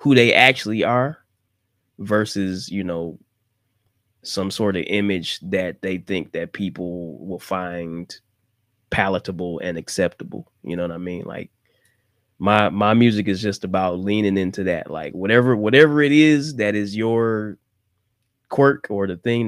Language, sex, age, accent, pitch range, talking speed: English, male, 20-39, American, 95-110 Hz, 150 wpm